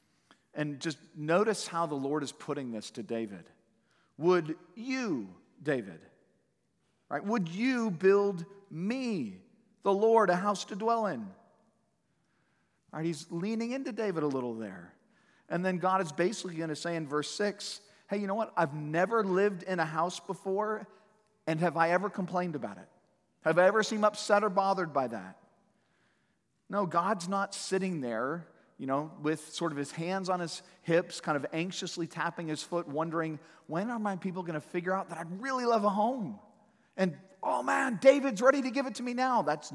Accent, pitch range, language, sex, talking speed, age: American, 155-205 Hz, English, male, 185 wpm, 40-59